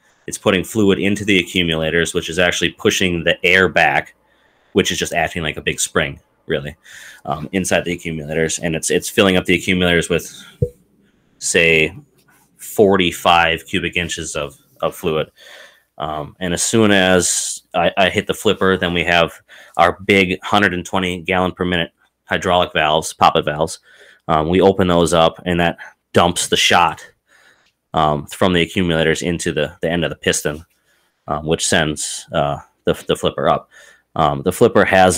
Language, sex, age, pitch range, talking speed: English, male, 30-49, 85-95 Hz, 160 wpm